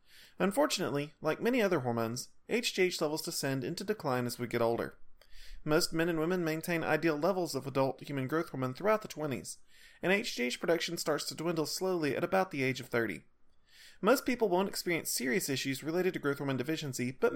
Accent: American